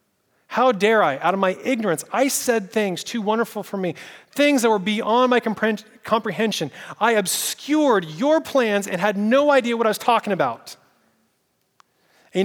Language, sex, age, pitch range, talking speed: English, male, 30-49, 175-225 Hz, 170 wpm